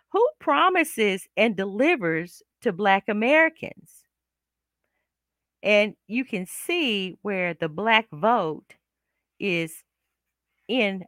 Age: 40-59